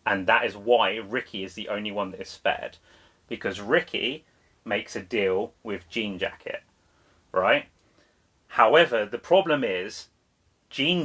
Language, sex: English, male